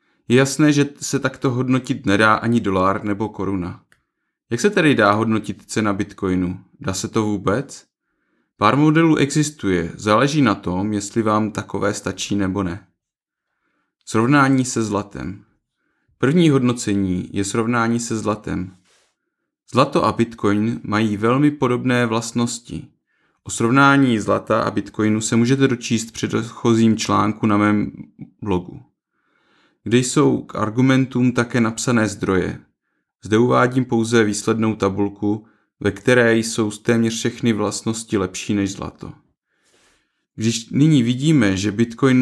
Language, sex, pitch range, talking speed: Czech, male, 105-125 Hz, 125 wpm